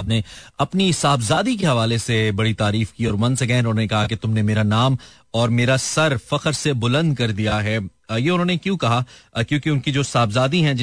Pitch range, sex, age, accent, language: 110-140 Hz, male, 30-49, native, Hindi